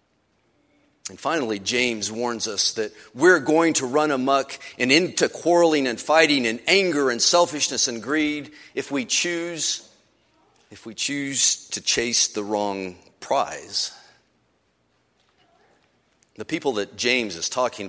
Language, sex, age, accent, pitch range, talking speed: English, male, 50-69, American, 110-160 Hz, 125 wpm